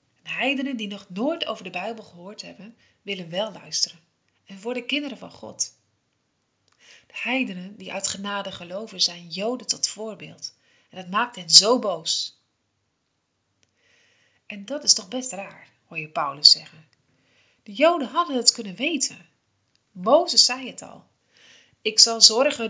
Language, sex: Dutch, female